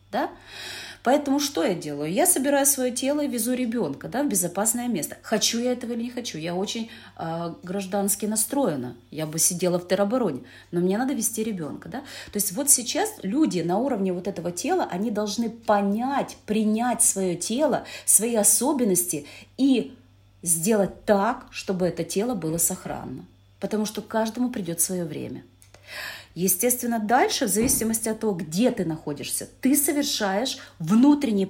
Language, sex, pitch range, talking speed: Russian, female, 185-260 Hz, 160 wpm